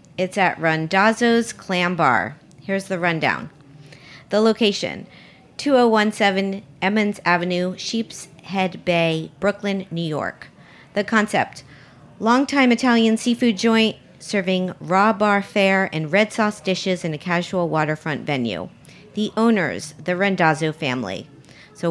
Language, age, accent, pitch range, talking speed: English, 40-59, American, 160-210 Hz, 120 wpm